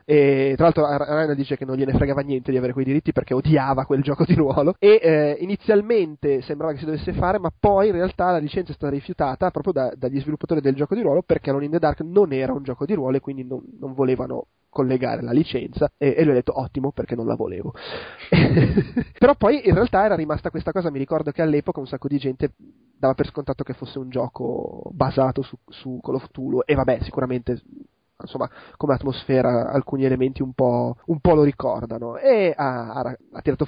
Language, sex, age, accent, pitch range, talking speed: Italian, male, 20-39, native, 135-165 Hz, 210 wpm